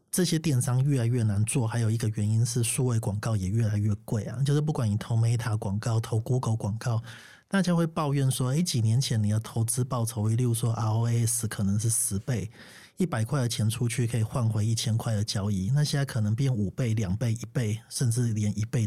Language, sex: Chinese, male